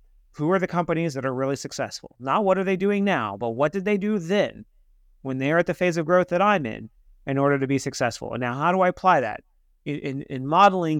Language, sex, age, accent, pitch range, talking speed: English, male, 30-49, American, 130-165 Hz, 240 wpm